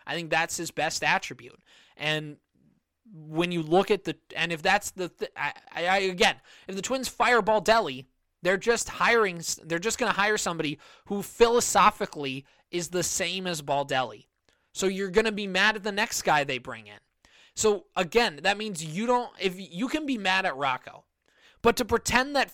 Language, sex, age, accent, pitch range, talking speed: English, male, 20-39, American, 170-220 Hz, 190 wpm